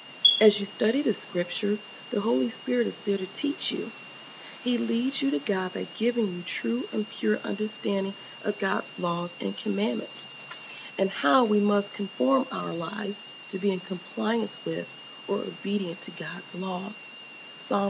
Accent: American